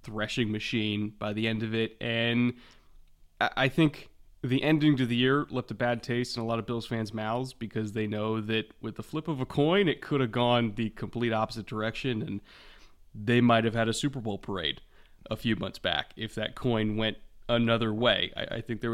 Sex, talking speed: male, 210 wpm